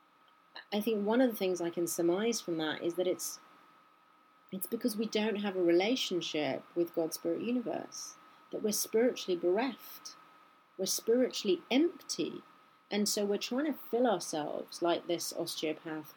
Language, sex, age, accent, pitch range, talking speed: English, female, 30-49, British, 170-225 Hz, 155 wpm